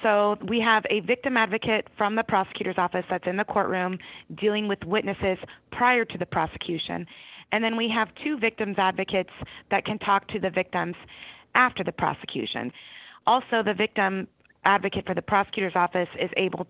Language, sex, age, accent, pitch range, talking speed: English, female, 30-49, American, 180-210 Hz, 170 wpm